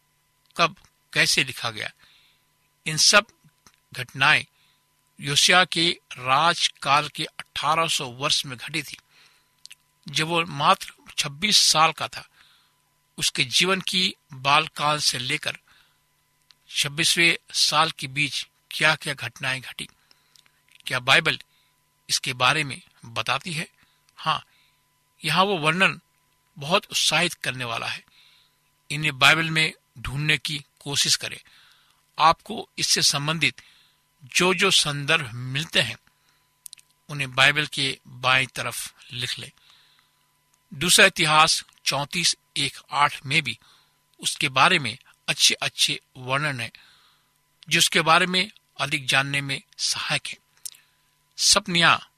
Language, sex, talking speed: Hindi, male, 110 wpm